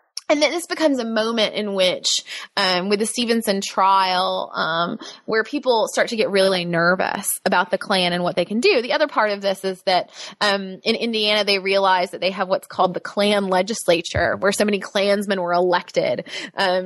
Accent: American